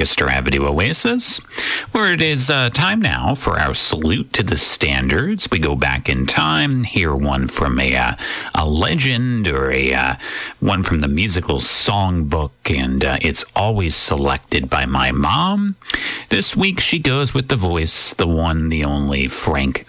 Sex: male